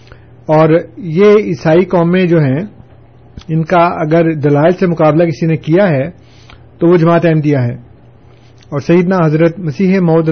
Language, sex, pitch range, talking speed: Urdu, male, 135-175 Hz, 155 wpm